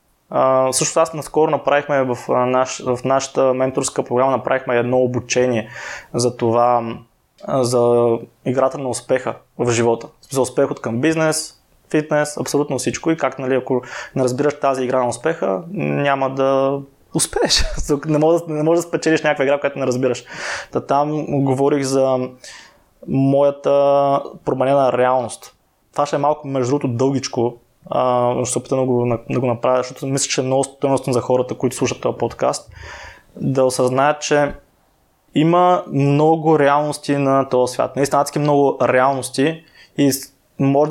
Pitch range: 125-145 Hz